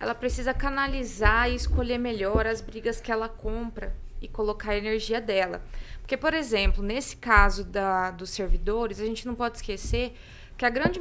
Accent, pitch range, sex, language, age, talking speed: Brazilian, 225-295 Hz, female, Portuguese, 20-39, 175 wpm